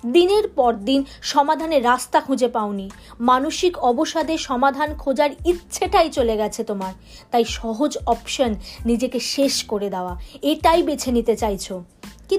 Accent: native